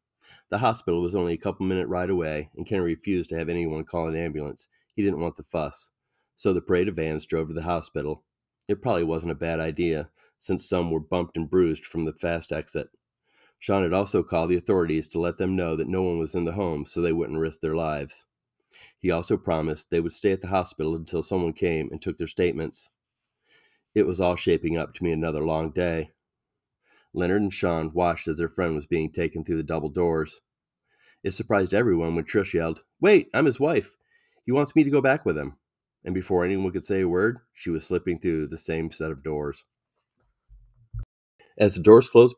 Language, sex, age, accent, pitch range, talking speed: English, male, 30-49, American, 80-90 Hz, 210 wpm